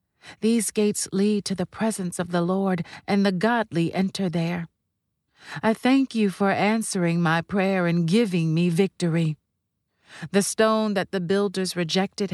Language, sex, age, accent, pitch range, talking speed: English, female, 40-59, American, 170-215 Hz, 150 wpm